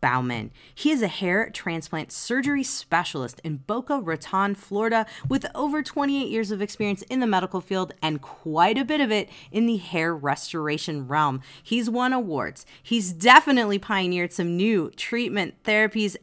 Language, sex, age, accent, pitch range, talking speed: English, female, 30-49, American, 160-230 Hz, 160 wpm